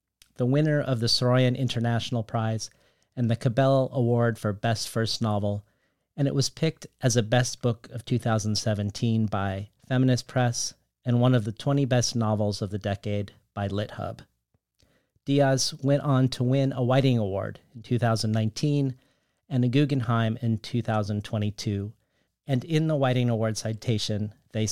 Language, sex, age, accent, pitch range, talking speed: English, male, 40-59, American, 110-135 Hz, 150 wpm